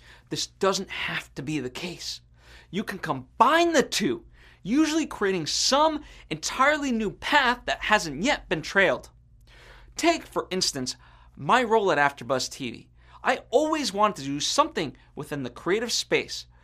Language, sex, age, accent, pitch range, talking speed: English, male, 30-49, American, 130-215 Hz, 145 wpm